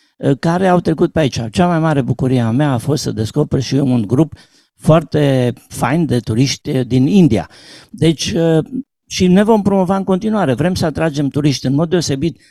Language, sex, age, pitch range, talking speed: Romanian, male, 50-69, 140-185 Hz, 185 wpm